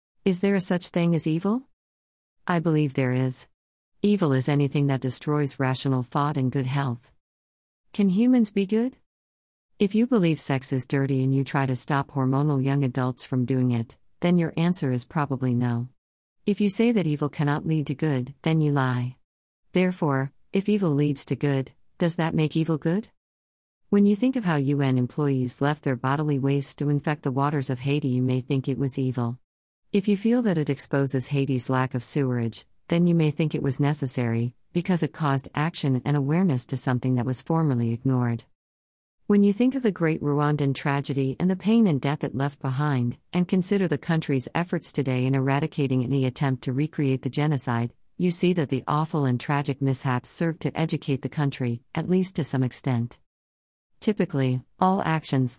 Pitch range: 130-165 Hz